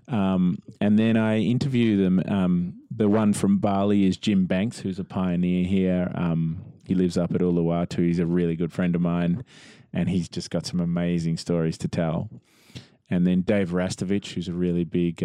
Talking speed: 190 wpm